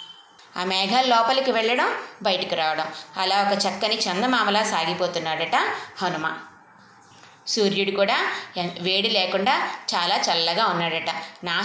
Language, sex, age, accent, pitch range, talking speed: Telugu, female, 20-39, native, 175-215 Hz, 105 wpm